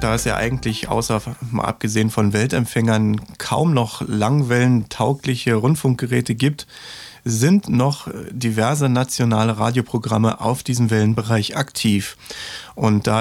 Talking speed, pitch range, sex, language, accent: 115 wpm, 110-130 Hz, male, German, German